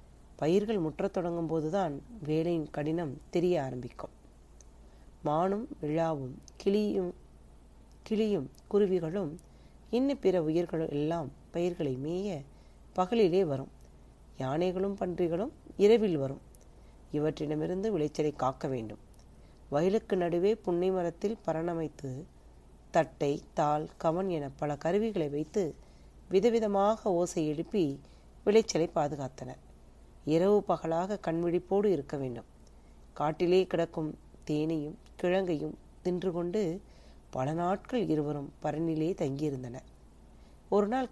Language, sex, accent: Tamil, female, native